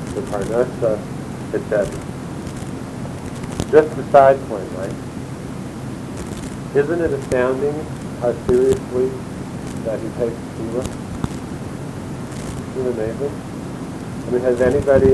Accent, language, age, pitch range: American, English, 50-69, 120-140 Hz